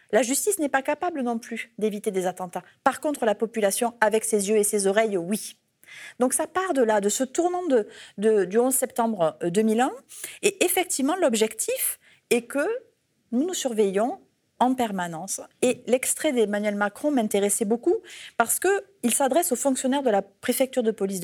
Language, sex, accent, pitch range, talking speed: French, female, French, 205-275 Hz, 170 wpm